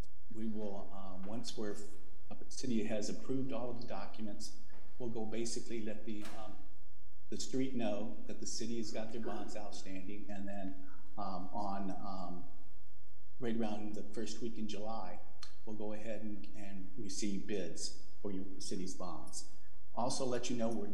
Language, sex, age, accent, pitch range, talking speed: English, male, 50-69, American, 95-110 Hz, 170 wpm